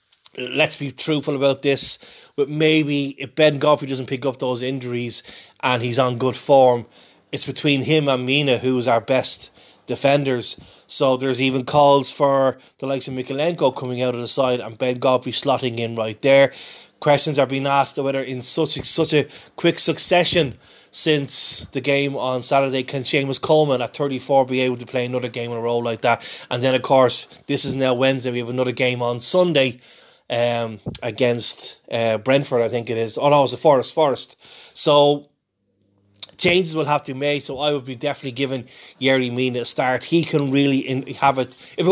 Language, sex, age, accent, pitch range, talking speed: English, male, 20-39, Irish, 125-140 Hz, 195 wpm